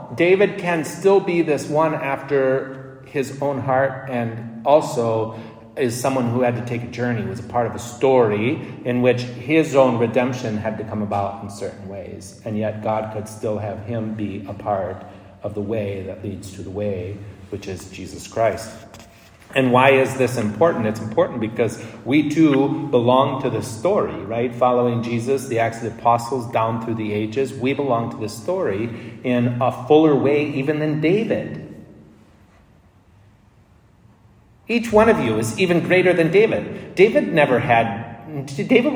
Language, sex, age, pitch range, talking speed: English, male, 40-59, 110-140 Hz, 170 wpm